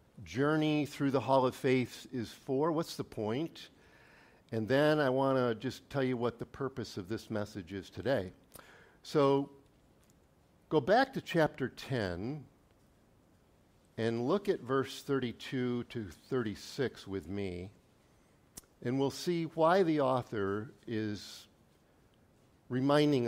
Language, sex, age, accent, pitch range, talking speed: English, male, 50-69, American, 120-155 Hz, 130 wpm